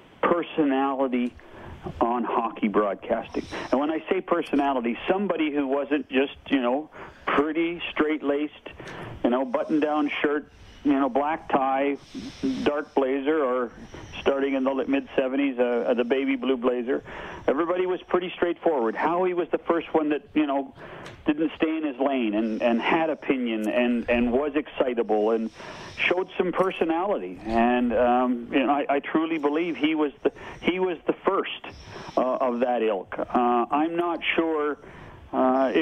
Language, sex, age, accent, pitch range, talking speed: English, male, 50-69, American, 125-155 Hz, 150 wpm